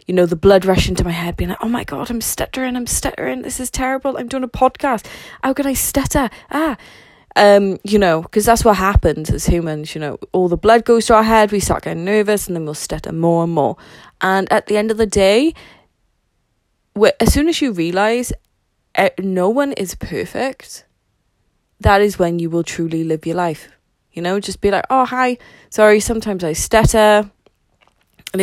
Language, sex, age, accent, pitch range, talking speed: English, female, 20-39, British, 165-215 Hz, 205 wpm